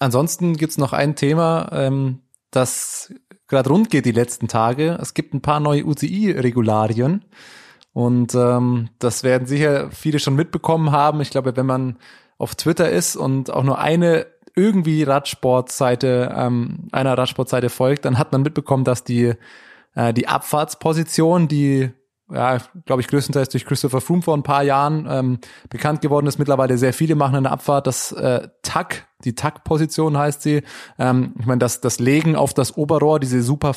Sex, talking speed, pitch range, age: male, 170 wpm, 130-160 Hz, 20-39